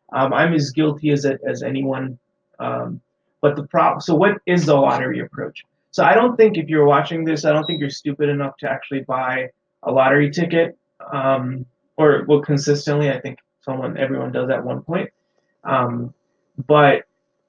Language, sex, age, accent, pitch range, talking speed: English, male, 20-39, American, 135-155 Hz, 180 wpm